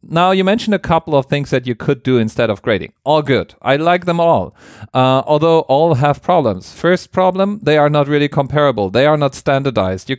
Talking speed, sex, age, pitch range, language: 220 wpm, male, 40-59, 110-150 Hz, English